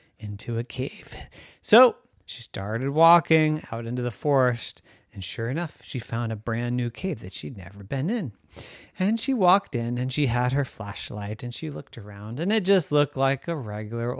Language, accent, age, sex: English, American, 30-49, male